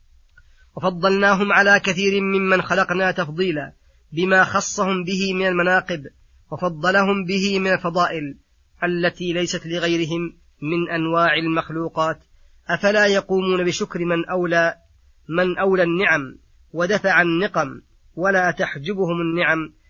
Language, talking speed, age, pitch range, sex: Arabic, 105 wpm, 30-49, 165-185 Hz, female